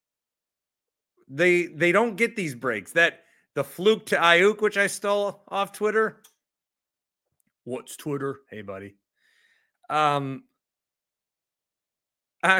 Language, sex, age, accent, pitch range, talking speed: English, male, 30-49, American, 120-185 Hz, 105 wpm